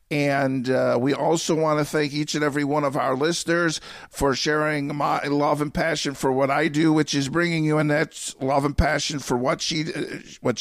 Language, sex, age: English, male, 50-69